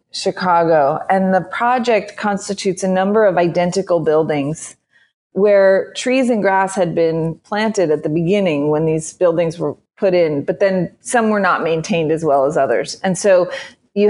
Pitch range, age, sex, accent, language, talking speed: 175-210 Hz, 30-49, female, American, English, 165 wpm